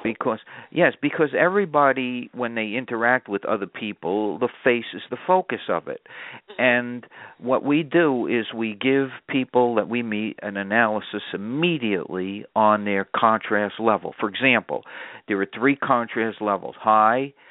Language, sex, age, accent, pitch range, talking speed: English, male, 50-69, American, 100-125 Hz, 145 wpm